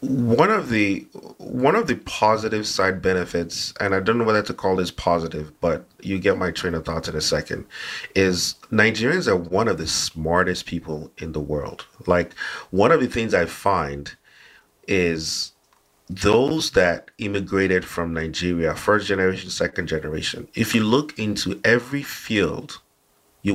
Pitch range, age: 90-120 Hz, 30-49